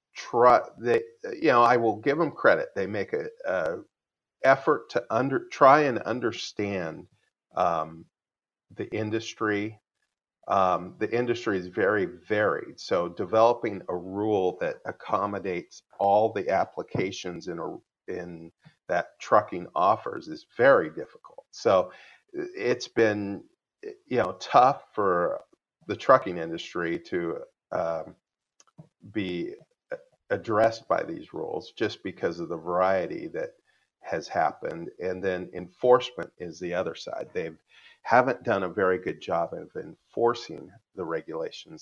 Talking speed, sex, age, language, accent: 130 wpm, male, 40-59, English, American